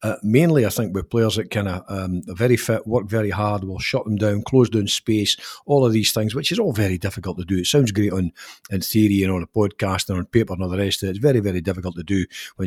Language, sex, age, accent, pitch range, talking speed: English, male, 50-69, British, 100-125 Hz, 280 wpm